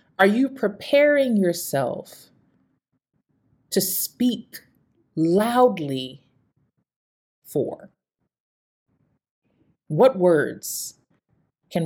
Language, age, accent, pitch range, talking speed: English, 30-49, American, 145-190 Hz, 55 wpm